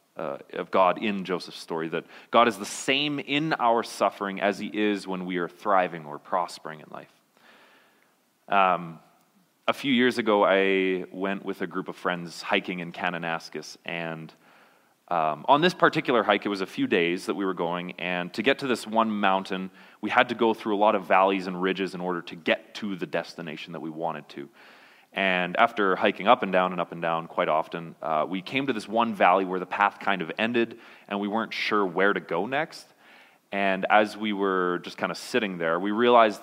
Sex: male